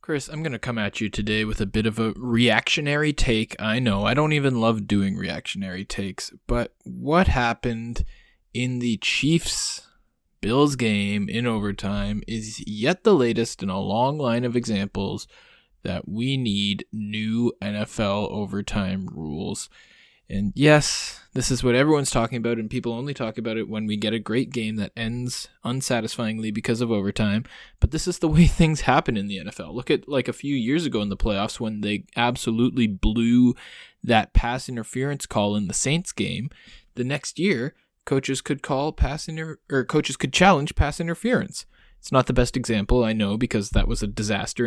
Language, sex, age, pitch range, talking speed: English, male, 20-39, 105-130 Hz, 180 wpm